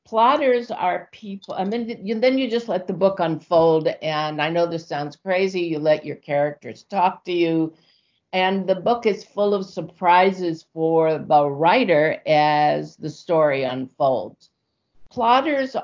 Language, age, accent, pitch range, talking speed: English, 60-79, American, 155-195 Hz, 155 wpm